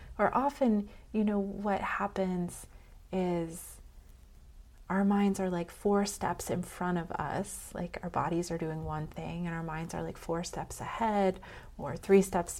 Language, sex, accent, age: English, female, American, 30-49